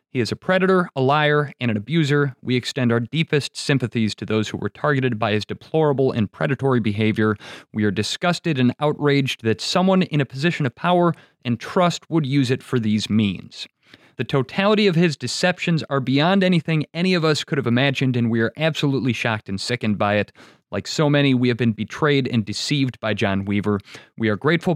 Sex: male